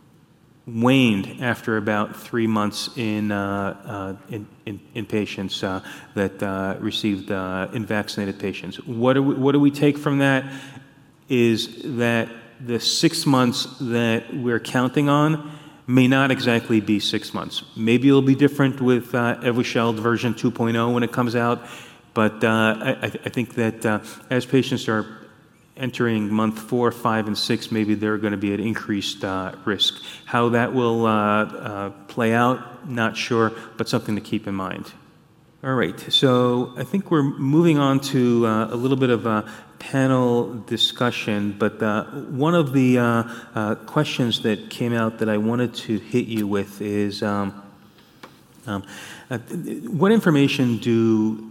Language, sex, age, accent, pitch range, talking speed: English, male, 30-49, American, 105-130 Hz, 160 wpm